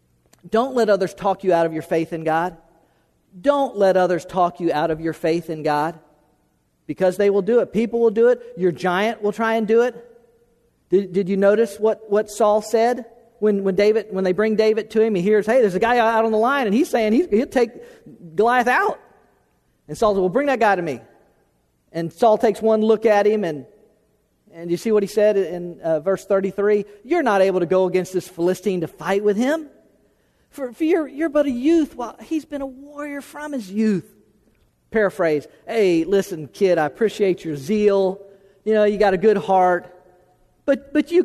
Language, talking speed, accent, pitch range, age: English, 210 wpm, American, 175-235 Hz, 40-59